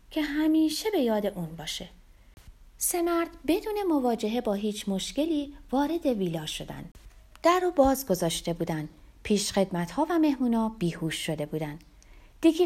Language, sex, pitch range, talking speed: Persian, female, 165-270 Hz, 130 wpm